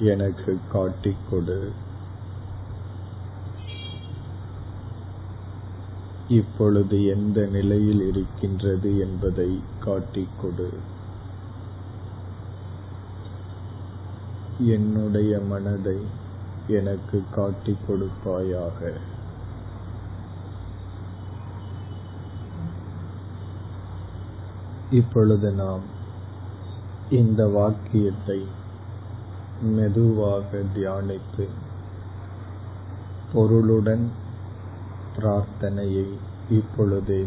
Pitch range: 95-100 Hz